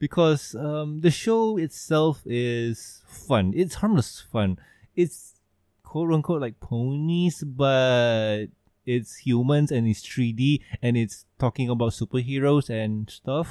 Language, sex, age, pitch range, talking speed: English, male, 20-39, 110-155 Hz, 120 wpm